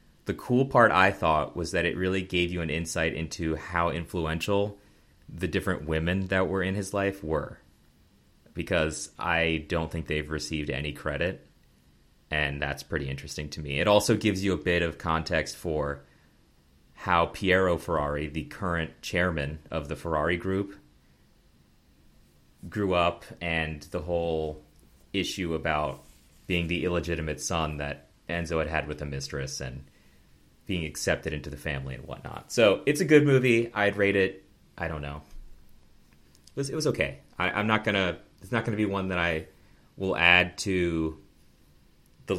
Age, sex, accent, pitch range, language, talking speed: 30-49, male, American, 75-95 Hz, English, 165 wpm